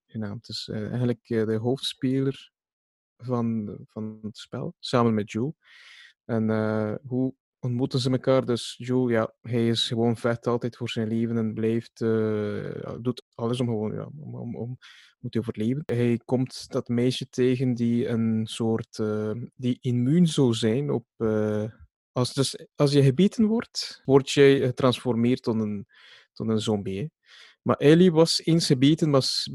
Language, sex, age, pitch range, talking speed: Dutch, male, 20-39, 110-130 Hz, 145 wpm